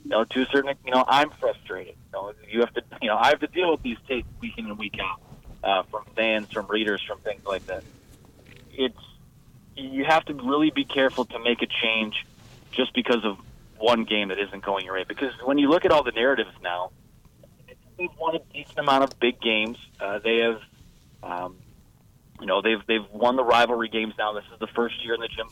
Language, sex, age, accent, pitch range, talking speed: English, male, 30-49, American, 110-130 Hz, 225 wpm